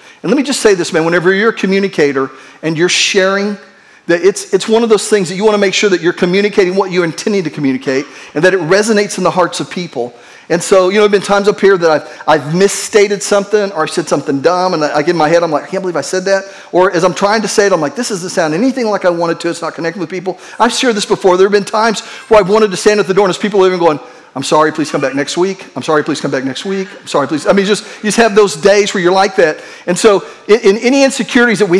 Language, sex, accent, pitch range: English, male, American, 170-210 Hz